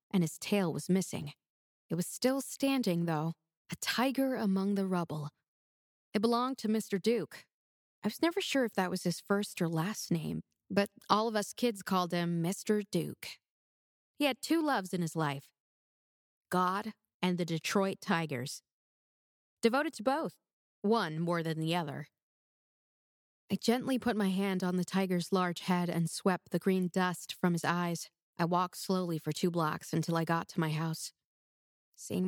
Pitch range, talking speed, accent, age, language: 160-195 Hz, 170 wpm, American, 20-39, English